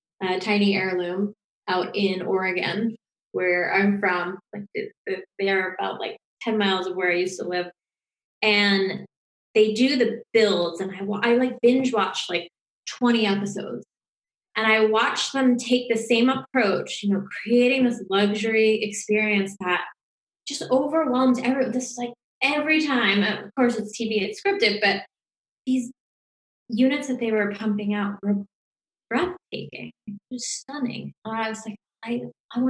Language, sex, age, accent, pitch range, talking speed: English, female, 20-39, American, 195-245 Hz, 145 wpm